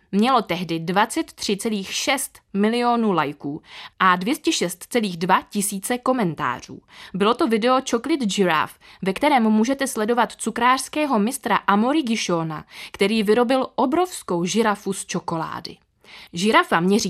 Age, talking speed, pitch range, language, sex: 20-39, 105 wpm, 175-245 Hz, Czech, female